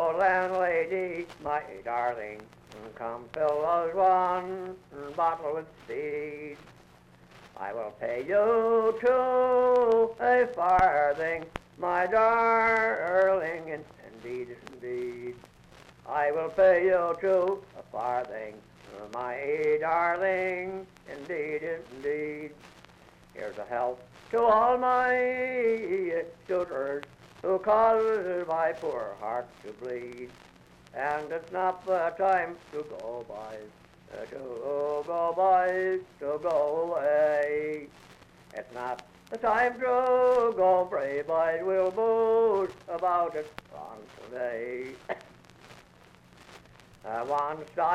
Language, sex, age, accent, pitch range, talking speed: English, male, 60-79, American, 135-190 Hz, 95 wpm